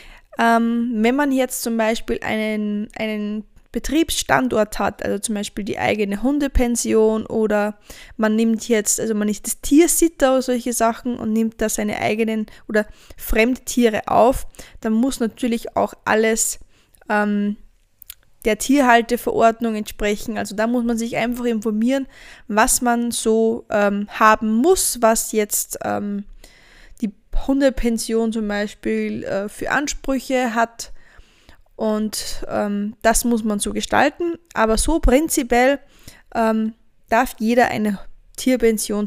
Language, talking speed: German, 125 wpm